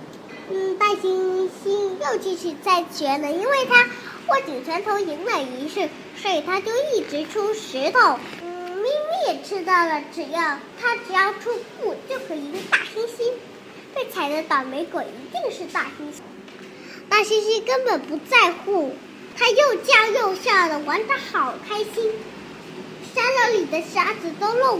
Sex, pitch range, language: male, 325-425 Hz, Chinese